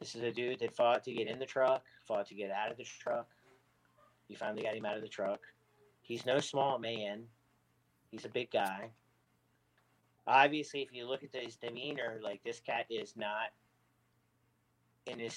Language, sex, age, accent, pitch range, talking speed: English, male, 40-59, American, 105-125 Hz, 185 wpm